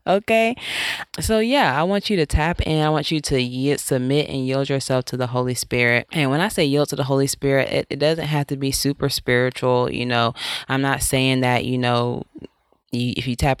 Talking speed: 220 wpm